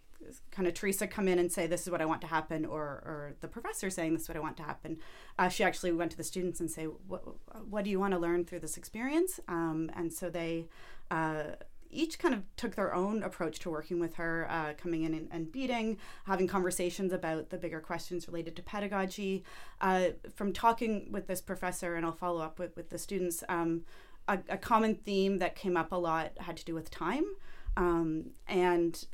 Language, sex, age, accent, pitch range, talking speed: English, female, 30-49, American, 165-190 Hz, 220 wpm